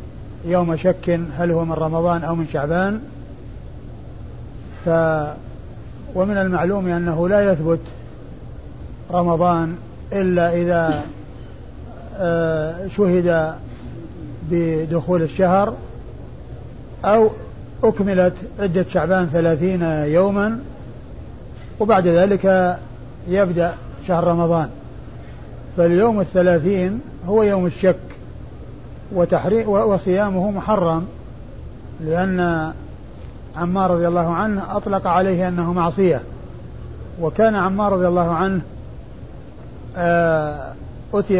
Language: Arabic